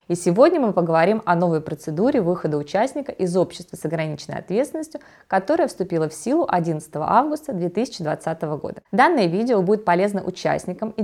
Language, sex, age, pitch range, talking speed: Russian, female, 20-39, 165-205 Hz, 150 wpm